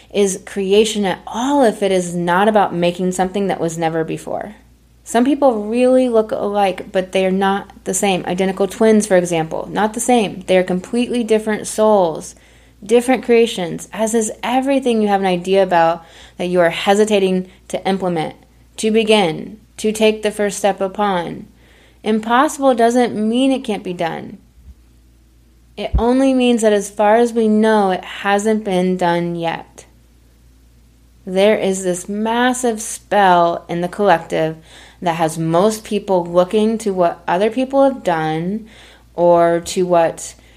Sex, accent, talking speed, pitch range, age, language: female, American, 155 wpm, 165-215 Hz, 20-39, English